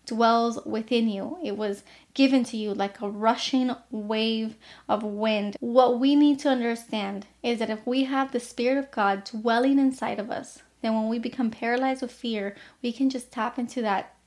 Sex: female